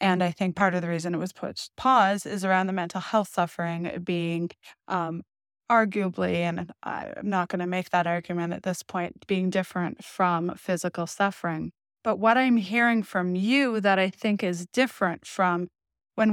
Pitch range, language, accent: 175-210 Hz, English, American